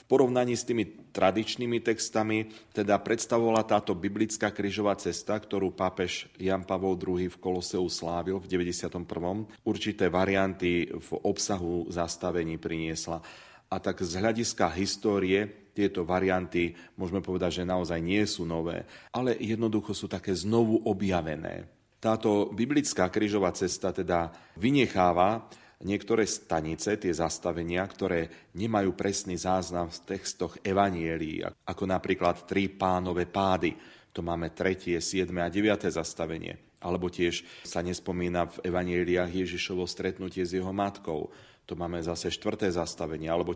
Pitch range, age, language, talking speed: 85-100 Hz, 40-59, Slovak, 130 wpm